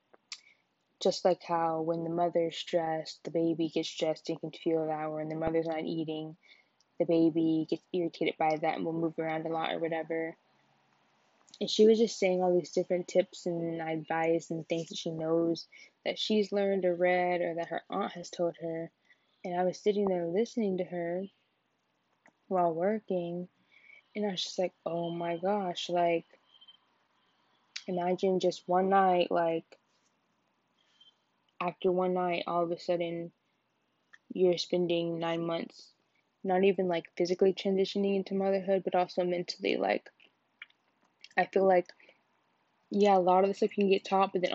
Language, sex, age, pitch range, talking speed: English, female, 10-29, 165-185 Hz, 165 wpm